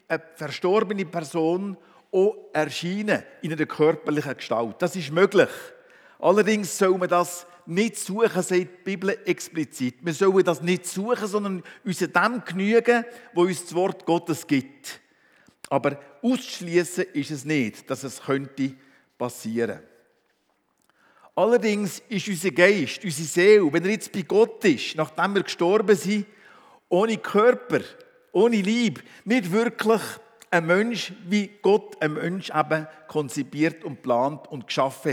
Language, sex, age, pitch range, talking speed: German, male, 50-69, 160-215 Hz, 135 wpm